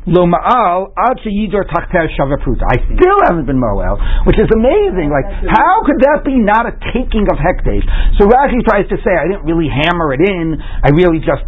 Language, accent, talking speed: English, American, 175 wpm